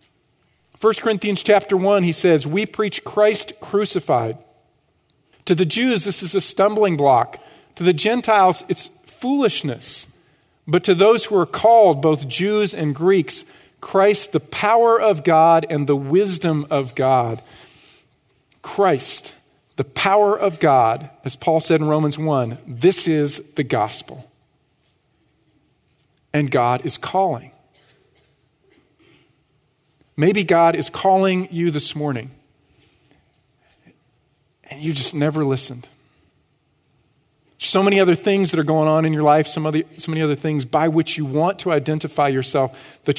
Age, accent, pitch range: 50-69, American, 140-190 Hz